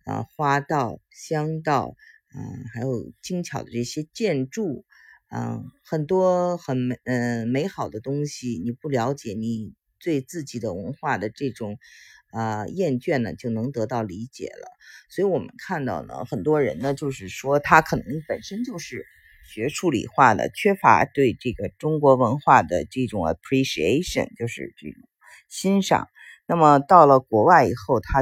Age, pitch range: 50-69, 120-160 Hz